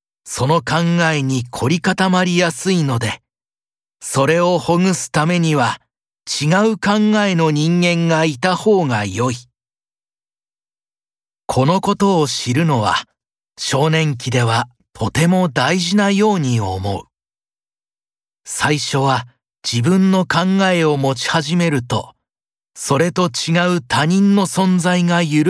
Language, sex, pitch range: Japanese, male, 130-180 Hz